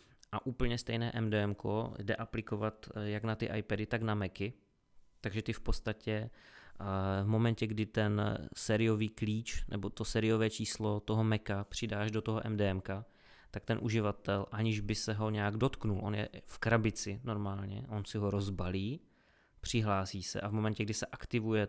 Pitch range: 105-115 Hz